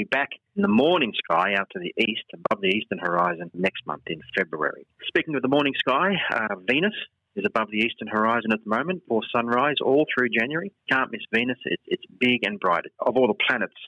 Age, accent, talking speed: 40-59, Australian, 215 wpm